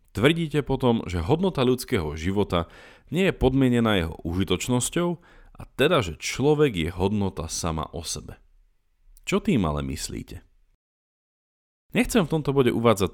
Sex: male